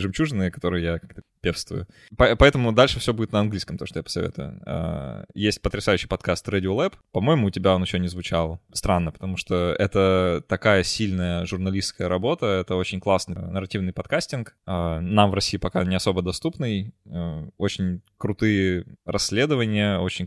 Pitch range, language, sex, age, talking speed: 90-105 Hz, Russian, male, 20-39, 155 wpm